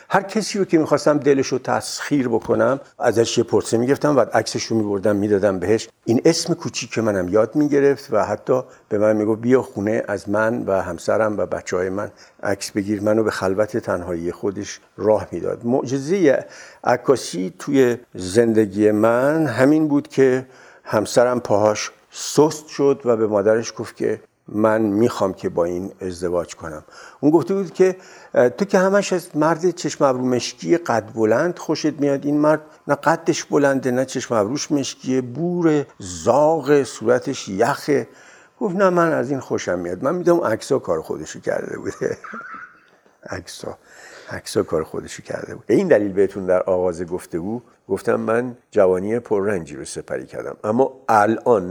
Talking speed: 160 wpm